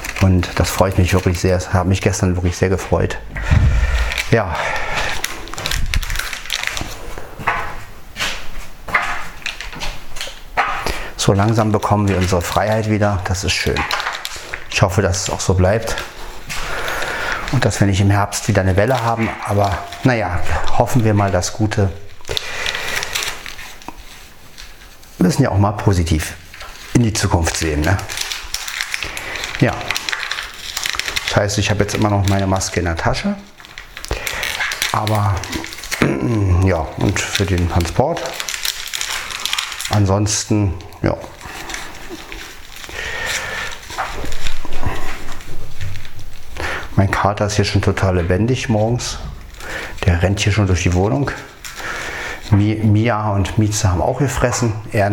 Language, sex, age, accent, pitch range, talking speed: German, male, 40-59, German, 90-110 Hz, 110 wpm